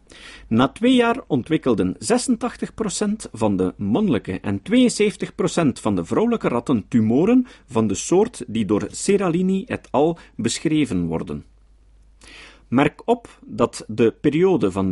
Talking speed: 125 wpm